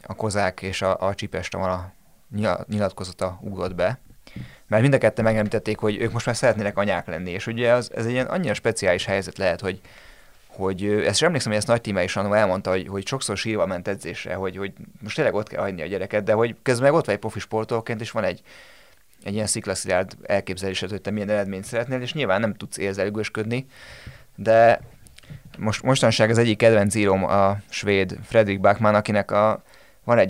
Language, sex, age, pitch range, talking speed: Hungarian, male, 20-39, 100-120 Hz, 190 wpm